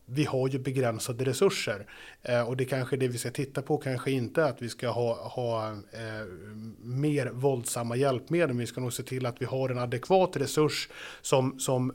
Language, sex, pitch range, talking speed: Swedish, male, 125-155 Hz, 200 wpm